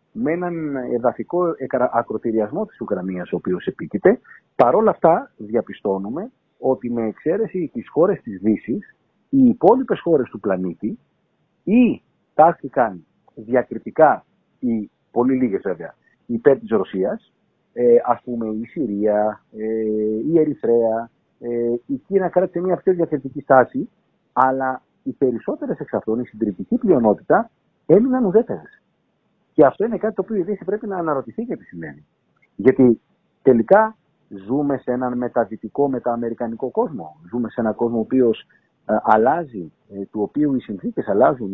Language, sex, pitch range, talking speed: Greek, male, 110-150 Hz, 135 wpm